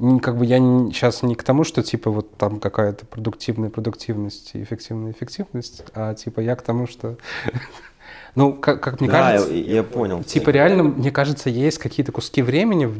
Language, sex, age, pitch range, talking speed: Russian, male, 20-39, 110-135 Hz, 165 wpm